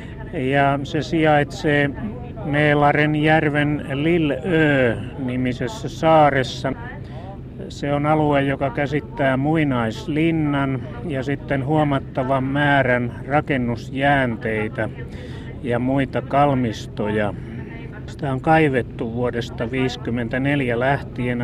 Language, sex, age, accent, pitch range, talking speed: Finnish, male, 30-49, native, 120-140 Hz, 80 wpm